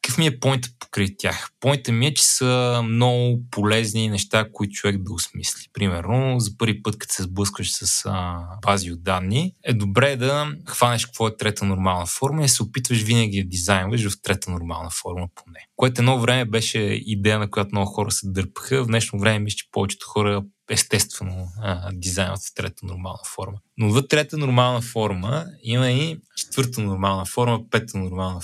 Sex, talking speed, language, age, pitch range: male, 185 wpm, Bulgarian, 20-39, 95-120 Hz